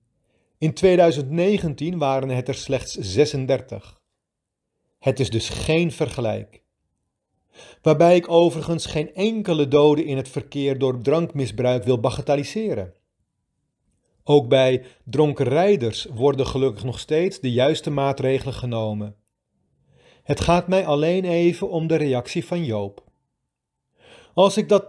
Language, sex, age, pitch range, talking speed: Dutch, male, 40-59, 115-165 Hz, 120 wpm